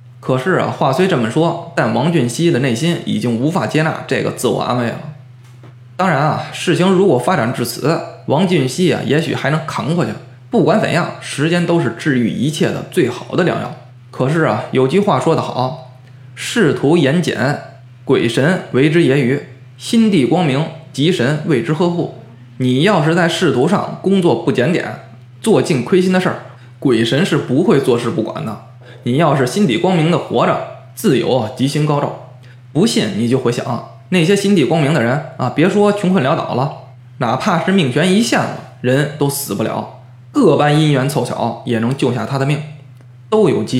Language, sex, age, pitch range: Chinese, male, 20-39, 125-165 Hz